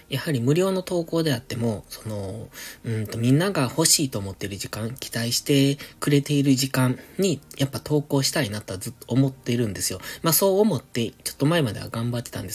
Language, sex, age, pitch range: Japanese, male, 20-39, 110-140 Hz